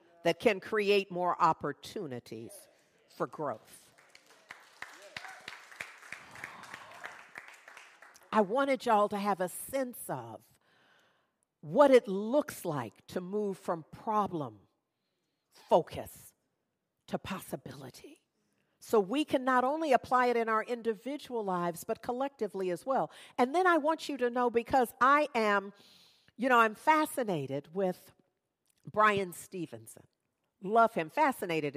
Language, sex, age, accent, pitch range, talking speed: English, female, 50-69, American, 175-230 Hz, 115 wpm